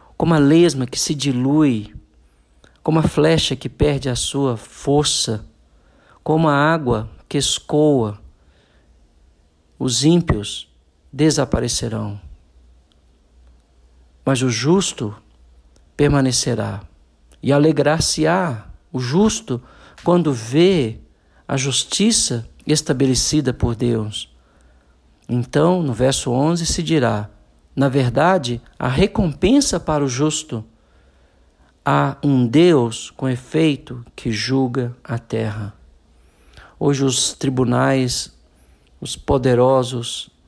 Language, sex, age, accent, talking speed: Portuguese, male, 50-69, Brazilian, 95 wpm